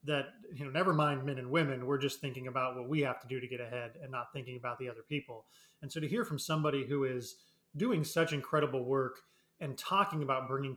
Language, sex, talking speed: English, male, 240 wpm